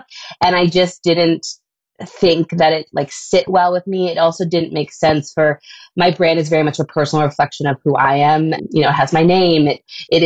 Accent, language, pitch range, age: American, English, 150-180 Hz, 20-39